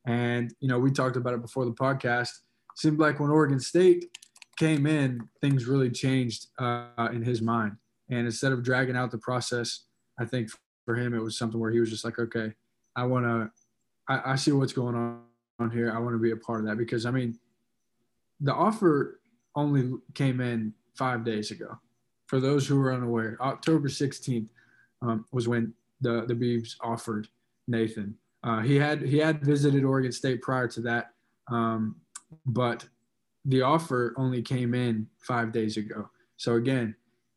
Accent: American